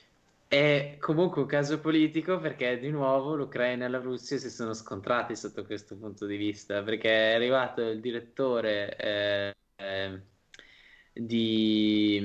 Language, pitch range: Italian, 105-130 Hz